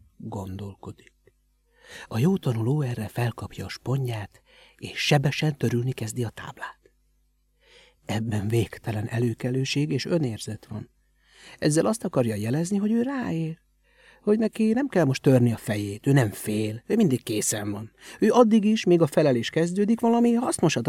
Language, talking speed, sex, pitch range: Hungarian, 145 wpm, male, 110-185 Hz